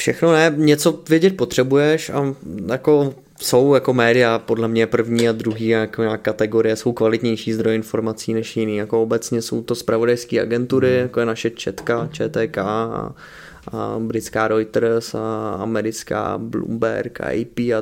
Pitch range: 115-135 Hz